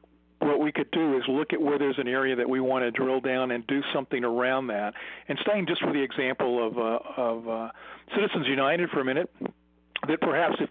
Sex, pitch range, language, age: male, 125-145 Hz, English, 50-69